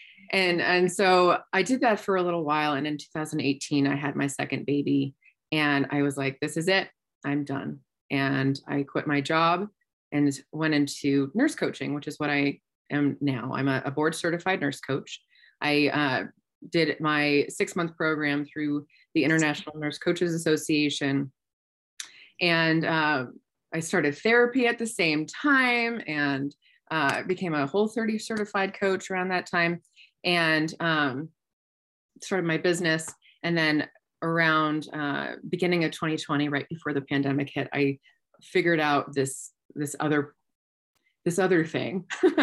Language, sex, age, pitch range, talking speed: English, female, 30-49, 145-175 Hz, 150 wpm